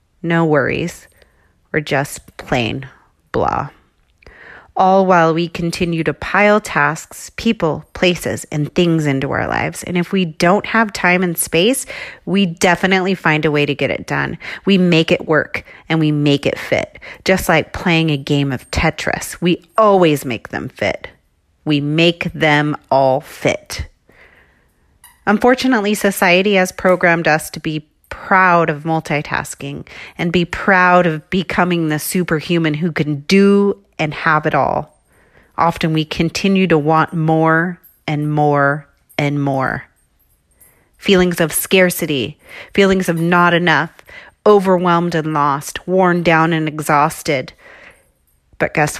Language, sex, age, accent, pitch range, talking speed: English, female, 30-49, American, 150-185 Hz, 140 wpm